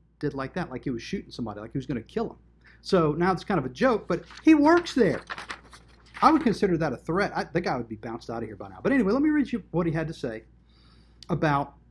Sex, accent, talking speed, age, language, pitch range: male, American, 275 wpm, 40-59, English, 125-185 Hz